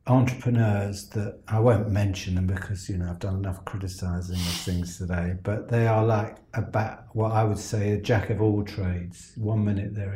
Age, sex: 50-69, male